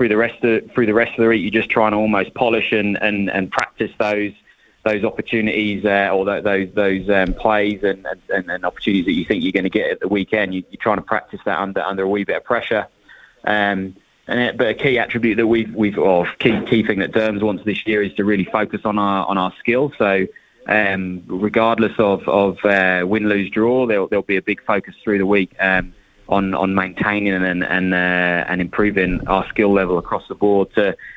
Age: 20-39